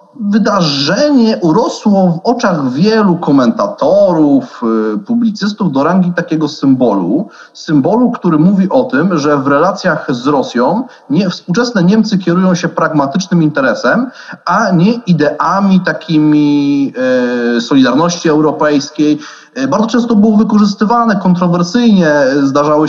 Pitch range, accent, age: 140-225 Hz, native, 30-49